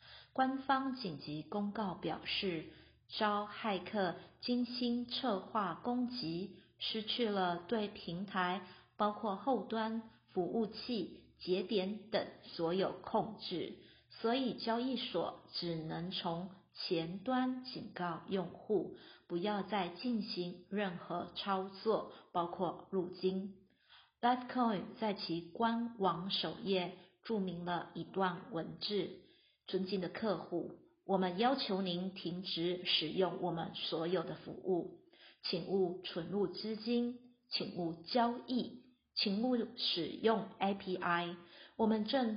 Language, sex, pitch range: Chinese, female, 180-225 Hz